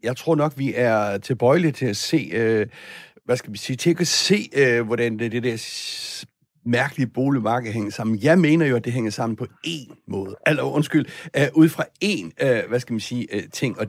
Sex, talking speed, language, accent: male, 185 wpm, Danish, native